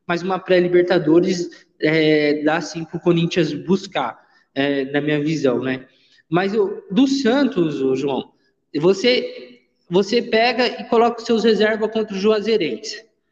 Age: 20-39